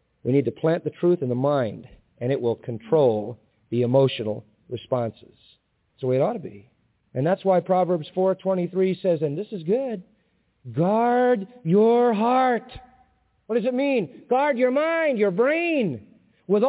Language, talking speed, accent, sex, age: English, 165 wpm, American, male, 40-59